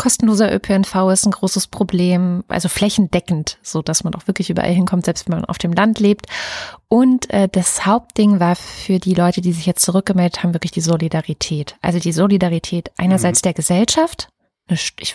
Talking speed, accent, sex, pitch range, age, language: 175 wpm, German, female, 175-215 Hz, 30-49, German